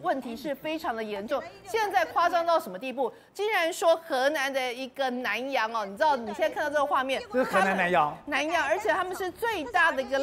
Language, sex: Chinese, female